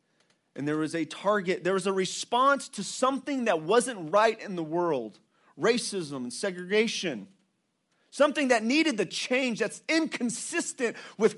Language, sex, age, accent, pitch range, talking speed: English, male, 30-49, American, 190-235 Hz, 150 wpm